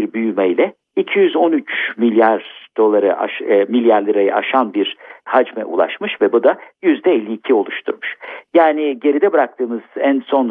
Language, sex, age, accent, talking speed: Turkish, male, 50-69, native, 120 wpm